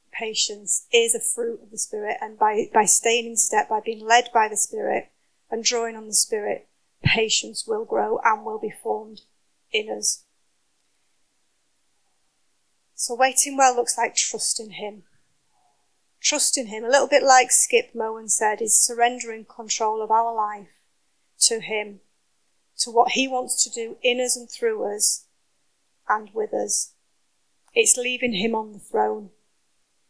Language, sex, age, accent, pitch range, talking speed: English, female, 30-49, British, 220-255 Hz, 155 wpm